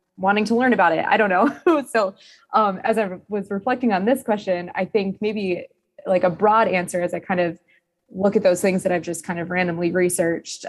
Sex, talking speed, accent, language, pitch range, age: female, 220 wpm, American, English, 180-215 Hz, 20-39